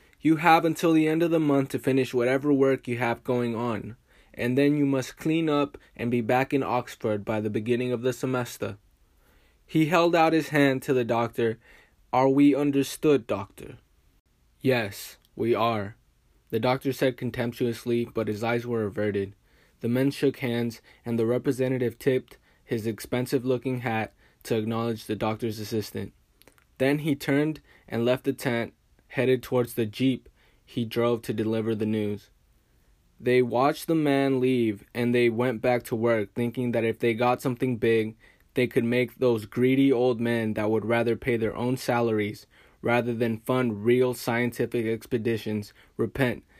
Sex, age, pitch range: male, 20-39, 115-130 Hz